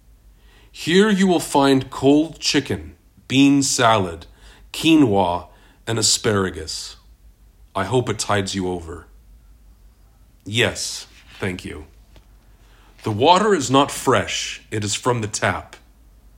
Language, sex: English, male